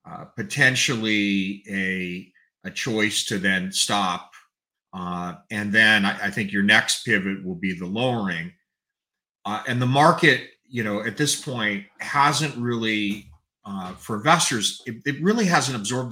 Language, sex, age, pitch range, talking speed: English, male, 40-59, 100-120 Hz, 150 wpm